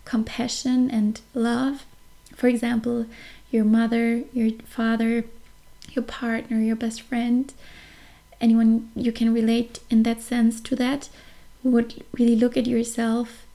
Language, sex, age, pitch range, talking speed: English, female, 20-39, 225-245 Hz, 125 wpm